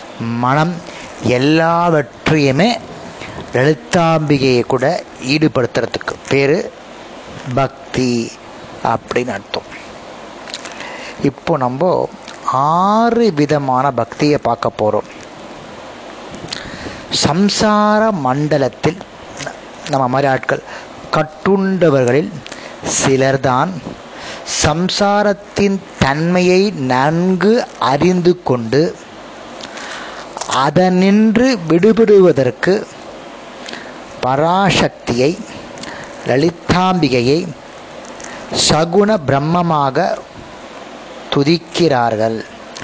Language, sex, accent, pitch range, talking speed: Tamil, male, native, 130-175 Hz, 50 wpm